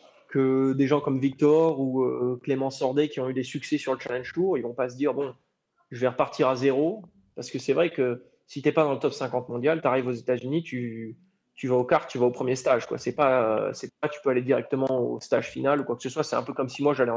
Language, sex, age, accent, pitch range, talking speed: French, male, 20-39, French, 125-150 Hz, 295 wpm